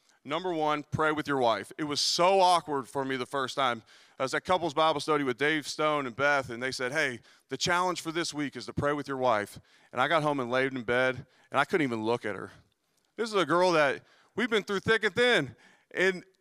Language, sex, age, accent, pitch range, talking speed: English, male, 30-49, American, 130-170 Hz, 250 wpm